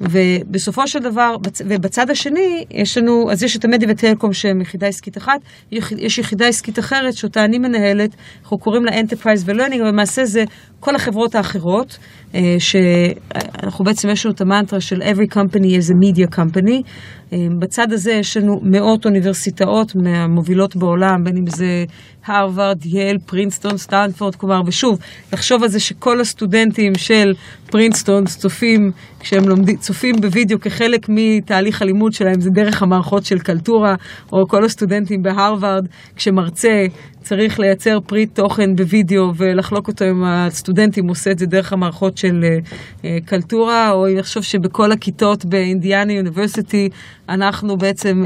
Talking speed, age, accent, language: 150 wpm, 30-49, native, Hebrew